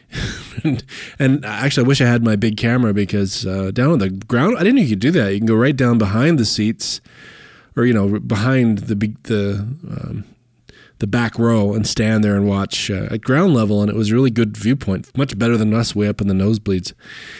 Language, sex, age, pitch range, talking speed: English, male, 20-39, 105-130 Hz, 230 wpm